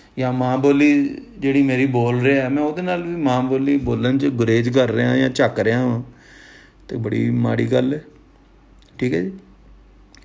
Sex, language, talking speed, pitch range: male, Punjabi, 170 wpm, 125-150 Hz